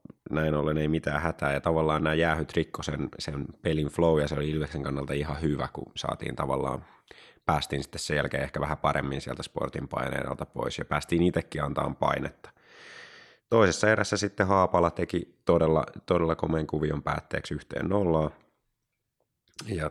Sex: male